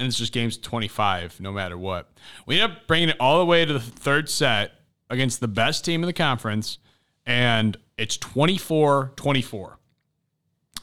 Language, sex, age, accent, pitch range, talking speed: English, male, 40-59, American, 100-140 Hz, 165 wpm